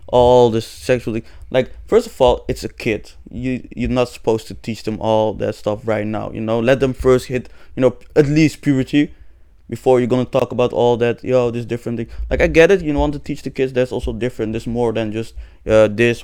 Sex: male